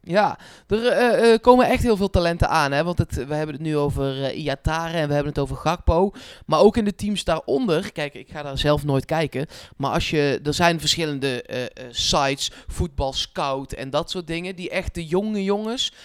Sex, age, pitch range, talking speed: male, 20-39, 155-200 Hz, 215 wpm